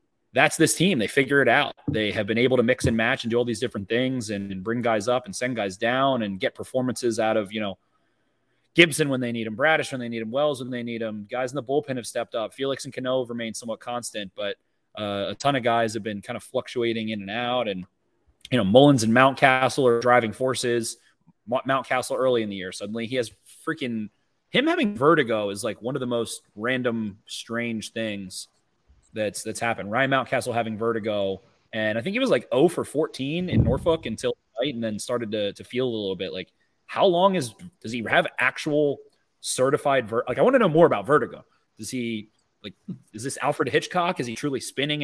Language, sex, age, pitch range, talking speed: English, male, 30-49, 110-135 Hz, 220 wpm